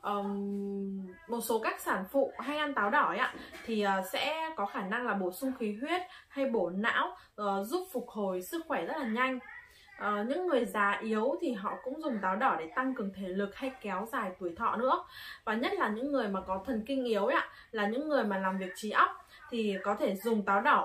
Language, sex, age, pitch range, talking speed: Vietnamese, female, 20-39, 195-275 Hz, 240 wpm